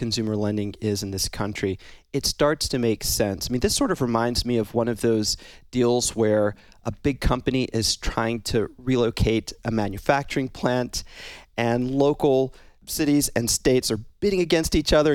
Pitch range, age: 110-130 Hz, 30-49